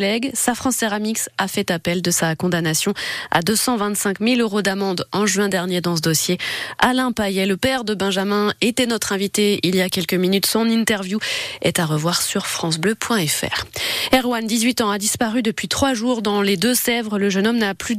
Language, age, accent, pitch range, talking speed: French, 20-39, French, 195-245 Hz, 195 wpm